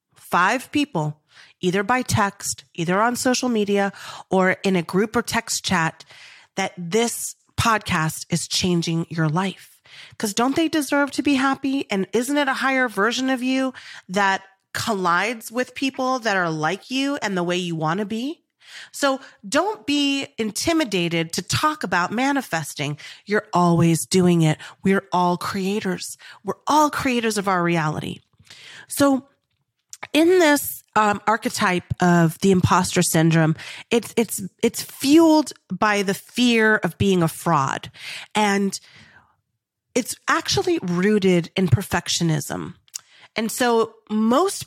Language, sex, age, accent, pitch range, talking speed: English, female, 30-49, American, 175-255 Hz, 140 wpm